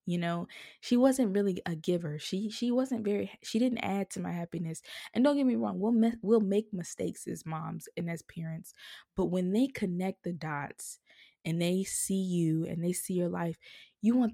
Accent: American